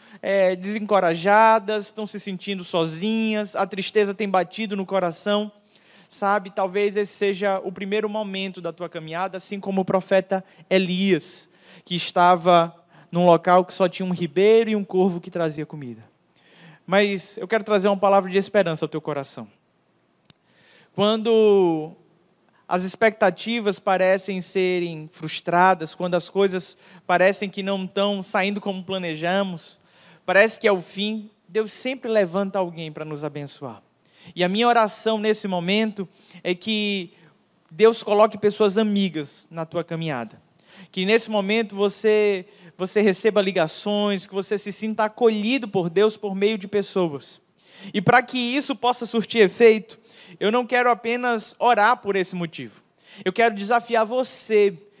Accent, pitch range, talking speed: Brazilian, 180-210 Hz, 145 wpm